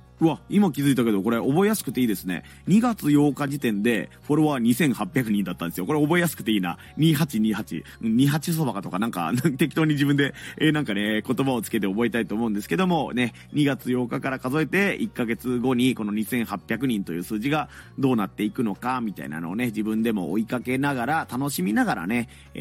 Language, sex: Japanese, male